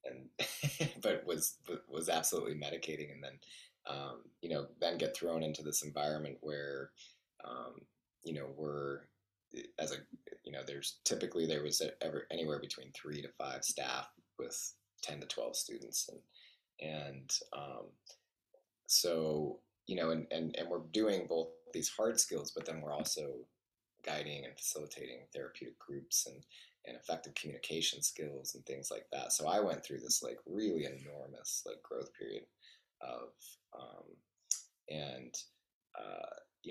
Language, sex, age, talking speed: English, male, 20-39, 150 wpm